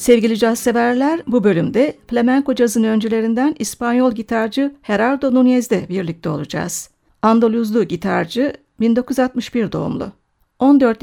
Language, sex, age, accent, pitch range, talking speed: Turkish, female, 60-79, native, 215-255 Hz, 100 wpm